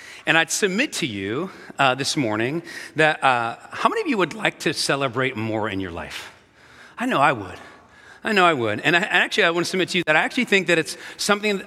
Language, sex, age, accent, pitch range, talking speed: English, male, 40-59, American, 125-165 Hz, 240 wpm